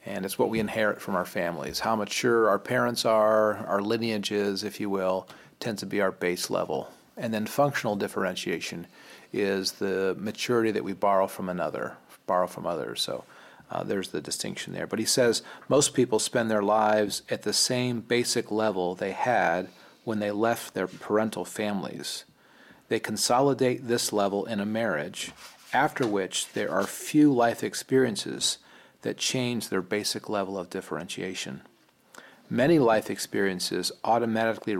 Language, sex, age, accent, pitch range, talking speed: English, male, 40-59, American, 100-120 Hz, 155 wpm